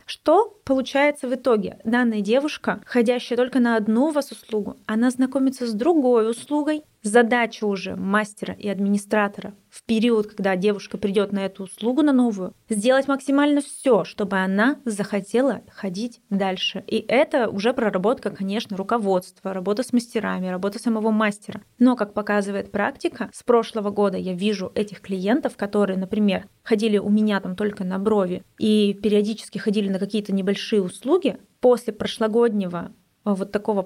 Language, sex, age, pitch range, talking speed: Russian, female, 20-39, 205-250 Hz, 150 wpm